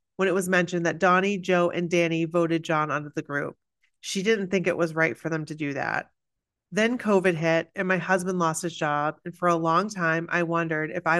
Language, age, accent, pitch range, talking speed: English, 30-49, American, 165-195 Hz, 230 wpm